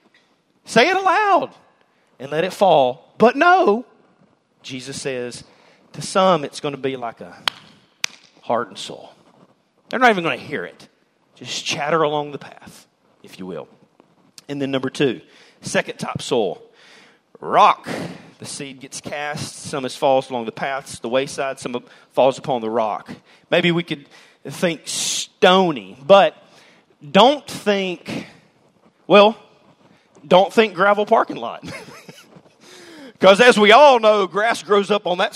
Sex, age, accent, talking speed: male, 40-59, American, 145 wpm